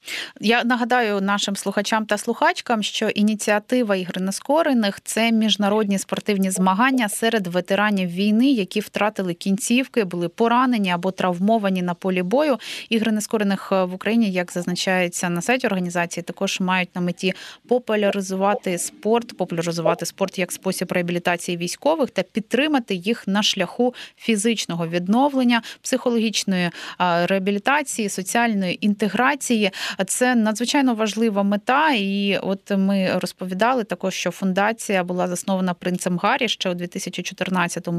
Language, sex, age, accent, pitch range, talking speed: Ukrainian, female, 20-39, native, 185-225 Hz, 125 wpm